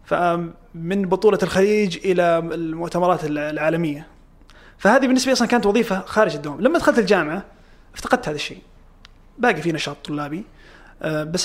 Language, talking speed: Arabic, 130 wpm